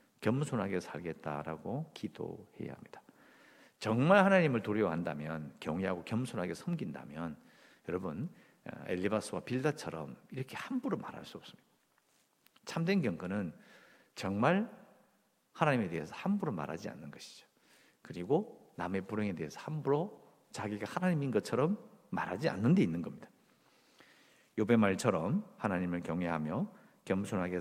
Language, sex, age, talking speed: English, male, 50-69, 100 wpm